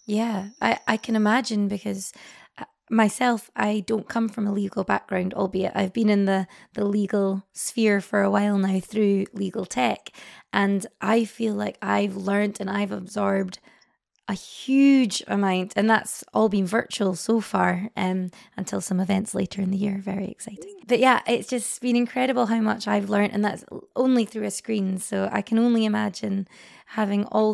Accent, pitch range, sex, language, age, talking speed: British, 195-225 Hz, female, English, 20-39, 175 wpm